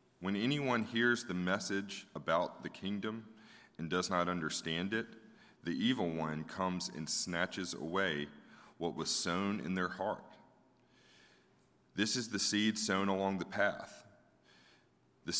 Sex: male